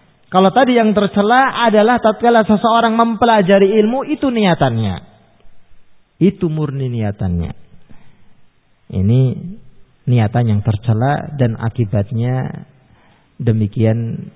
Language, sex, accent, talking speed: Indonesian, male, native, 90 wpm